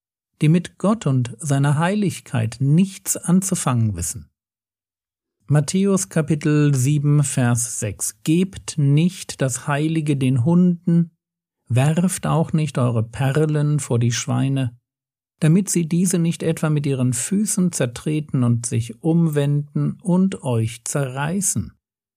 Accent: German